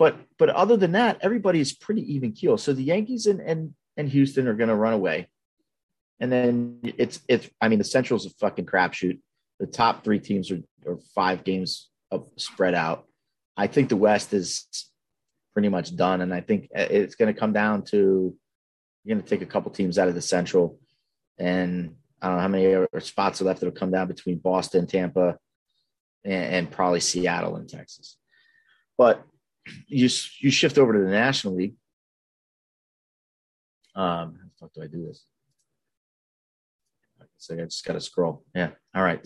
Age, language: 30-49, English